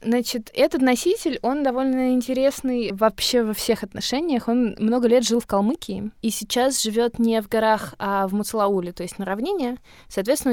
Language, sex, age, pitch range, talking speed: Russian, female, 20-39, 180-230 Hz, 170 wpm